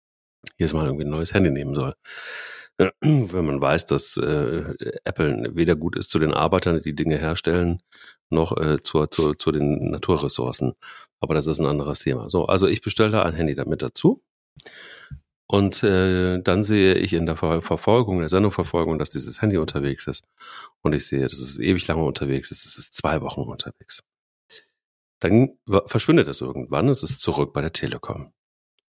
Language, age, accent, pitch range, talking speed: German, 40-59, German, 80-100 Hz, 170 wpm